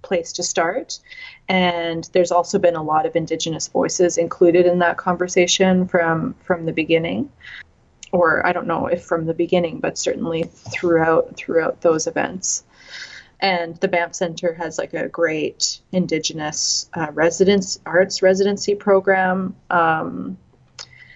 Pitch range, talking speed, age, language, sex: 165-185 Hz, 140 wpm, 30-49, English, female